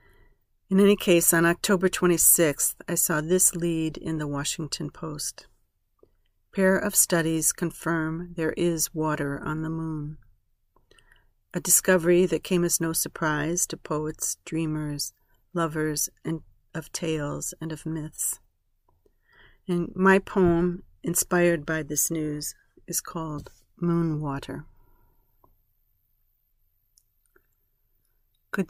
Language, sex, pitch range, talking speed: English, female, 150-180 Hz, 115 wpm